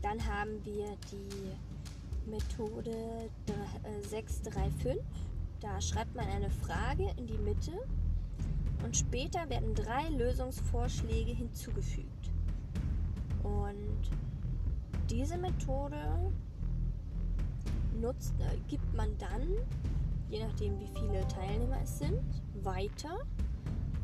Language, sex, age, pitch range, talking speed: German, female, 20-39, 75-100 Hz, 85 wpm